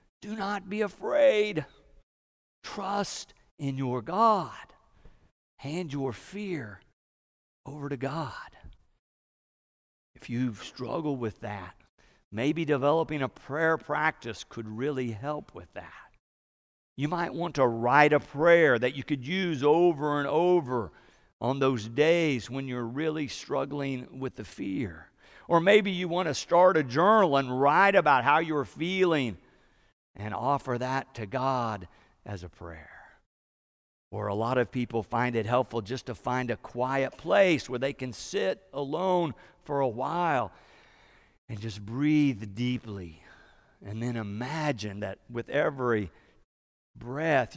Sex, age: male, 50-69